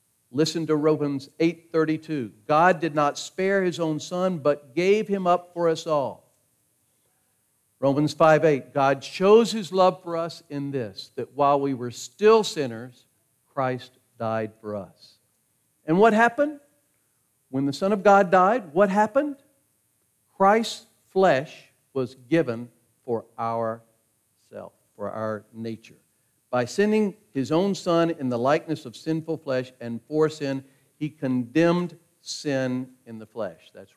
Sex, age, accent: male, 50-69, American